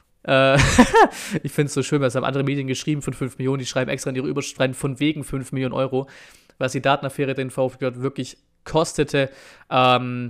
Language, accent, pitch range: German, German, 125-145 Hz